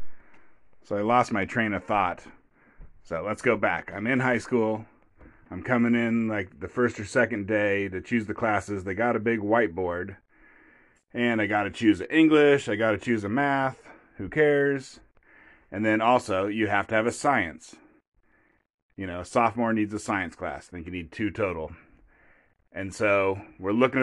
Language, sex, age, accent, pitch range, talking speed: English, male, 30-49, American, 105-125 Hz, 185 wpm